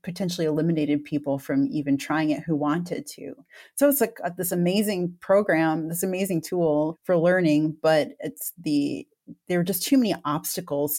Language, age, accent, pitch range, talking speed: English, 30-49, American, 160-195 Hz, 165 wpm